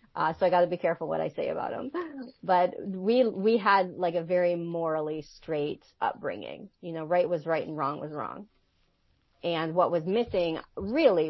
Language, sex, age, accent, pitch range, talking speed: English, female, 30-49, American, 165-205 Hz, 190 wpm